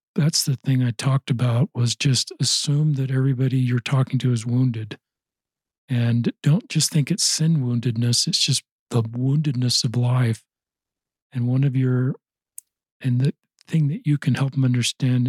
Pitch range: 120-140 Hz